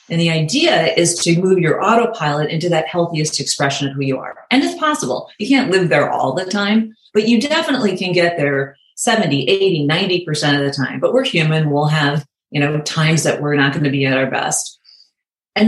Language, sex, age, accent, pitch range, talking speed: English, female, 40-59, American, 150-190 Hz, 215 wpm